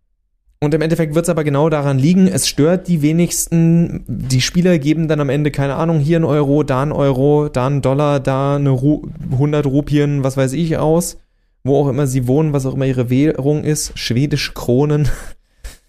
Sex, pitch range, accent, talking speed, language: male, 130-165 Hz, German, 195 wpm, German